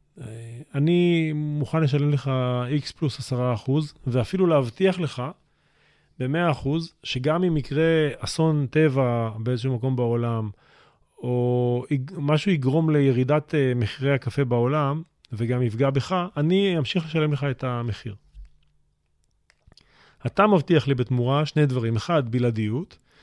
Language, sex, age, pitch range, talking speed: Hebrew, male, 40-59, 120-155 Hz, 115 wpm